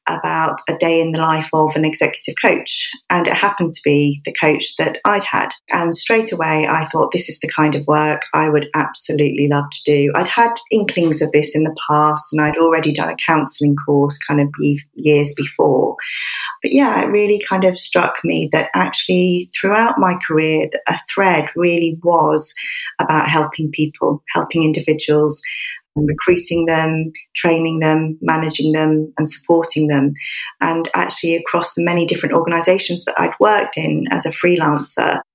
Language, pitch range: English, 150-170 Hz